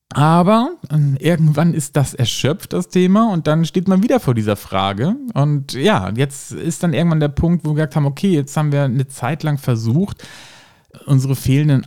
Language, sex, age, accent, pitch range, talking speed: German, male, 40-59, German, 115-150 Hz, 185 wpm